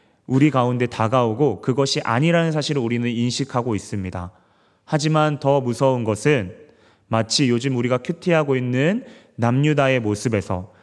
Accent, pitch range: native, 115-150 Hz